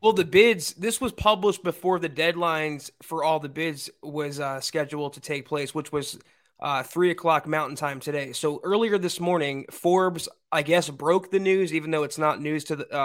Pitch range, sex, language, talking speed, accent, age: 150-190 Hz, male, English, 200 wpm, American, 20-39